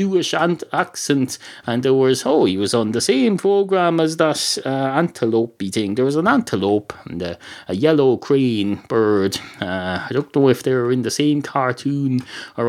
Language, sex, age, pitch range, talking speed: English, male, 30-49, 120-165 Hz, 180 wpm